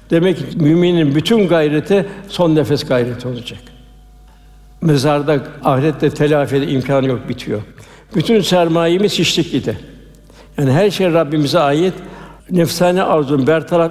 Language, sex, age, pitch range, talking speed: Turkish, male, 60-79, 140-175 Hz, 115 wpm